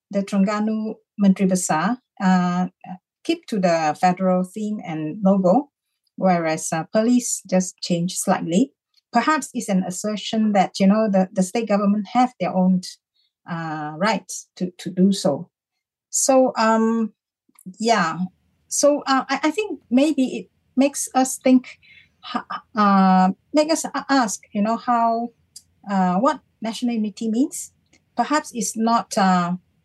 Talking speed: 135 wpm